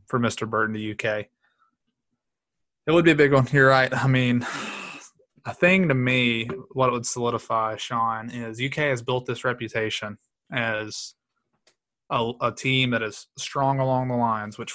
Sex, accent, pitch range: male, American, 115-130 Hz